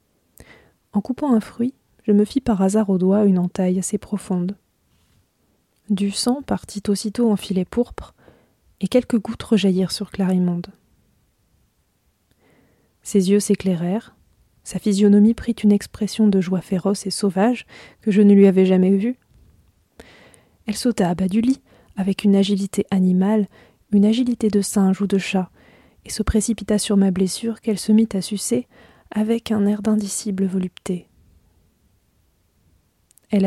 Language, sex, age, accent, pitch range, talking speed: French, female, 20-39, French, 190-215 Hz, 145 wpm